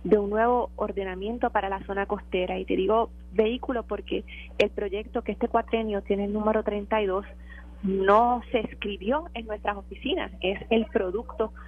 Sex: female